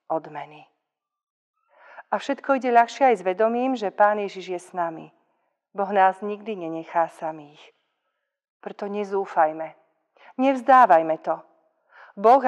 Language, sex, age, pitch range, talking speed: Slovak, female, 40-59, 180-220 Hz, 115 wpm